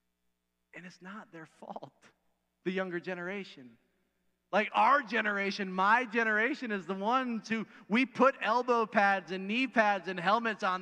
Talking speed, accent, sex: 150 wpm, American, male